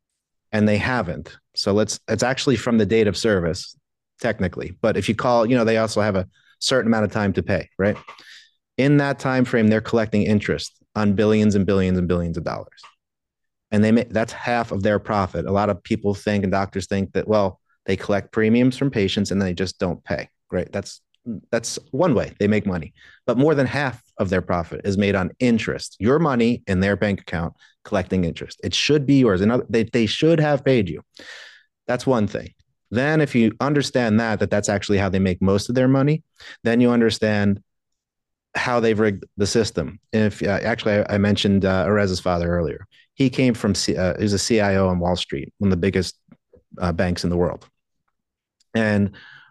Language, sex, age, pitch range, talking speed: English, male, 30-49, 95-115 Hz, 205 wpm